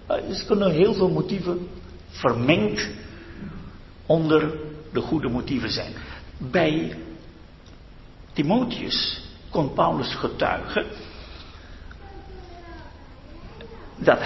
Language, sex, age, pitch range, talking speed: Dutch, male, 60-79, 115-175 Hz, 70 wpm